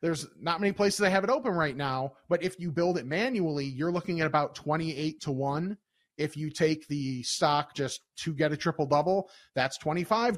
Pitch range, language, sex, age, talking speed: 145-180 Hz, English, male, 30-49, 210 wpm